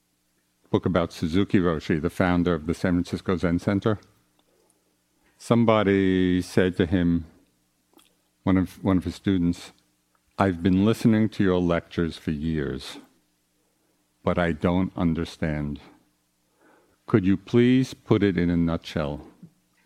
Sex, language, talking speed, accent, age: male, English, 125 wpm, American, 50-69